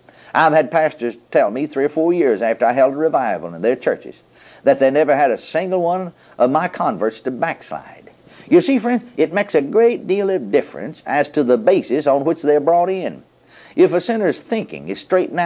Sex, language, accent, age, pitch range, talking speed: male, English, American, 50-69, 155-185 Hz, 210 wpm